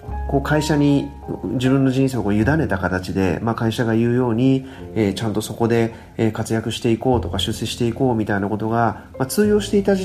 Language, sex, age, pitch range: Japanese, male, 40-59, 100-145 Hz